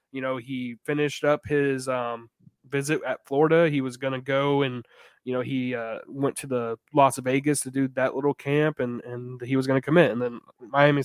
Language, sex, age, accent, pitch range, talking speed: English, male, 20-39, American, 125-145 Hz, 225 wpm